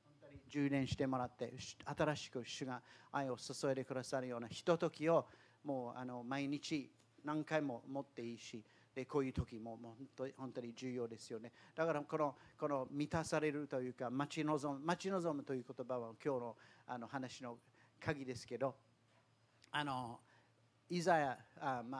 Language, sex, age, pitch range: Japanese, male, 50-69, 120-145 Hz